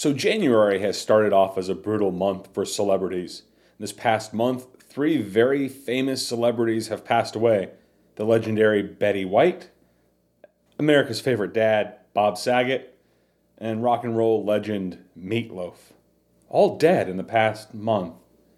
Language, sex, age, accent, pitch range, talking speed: English, male, 30-49, American, 105-145 Hz, 135 wpm